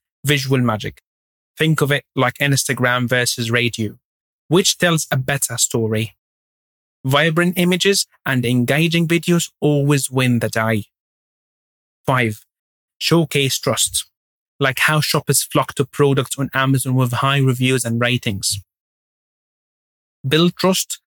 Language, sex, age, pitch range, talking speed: English, male, 30-49, 125-165 Hz, 115 wpm